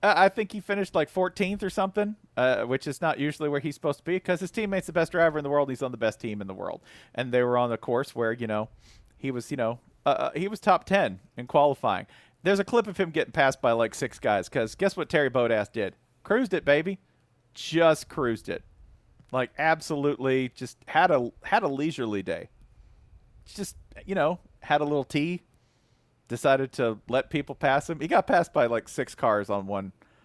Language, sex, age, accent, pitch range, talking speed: English, male, 40-59, American, 110-170 Hz, 215 wpm